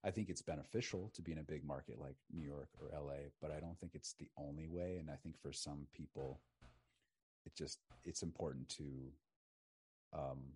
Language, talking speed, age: English, 200 wpm, 30-49